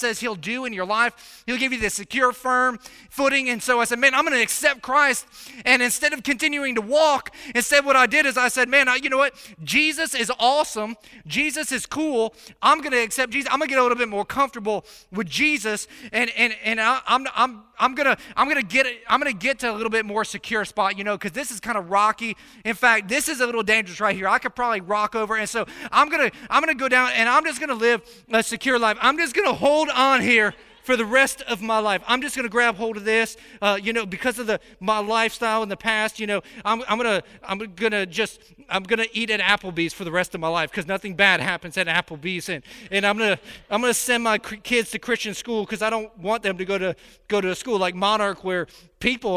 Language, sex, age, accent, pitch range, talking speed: English, male, 20-39, American, 205-255 Hz, 255 wpm